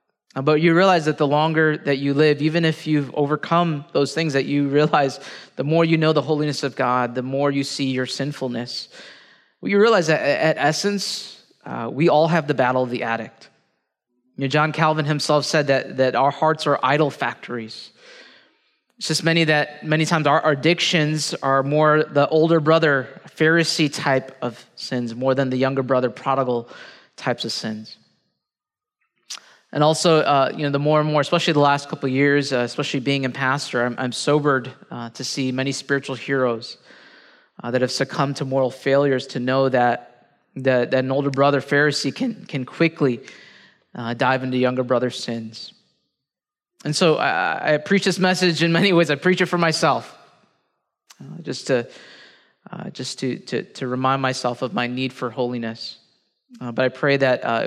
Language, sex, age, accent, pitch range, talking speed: English, male, 30-49, American, 130-155 Hz, 185 wpm